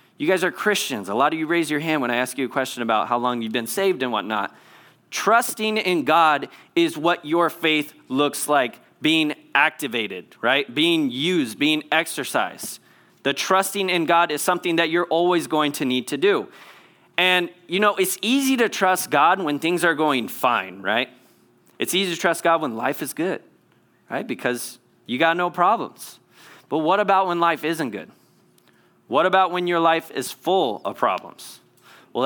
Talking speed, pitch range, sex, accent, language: 190 wpm, 130-190 Hz, male, American, English